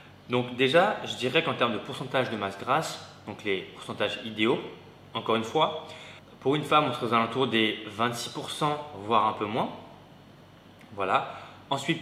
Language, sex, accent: French, male, French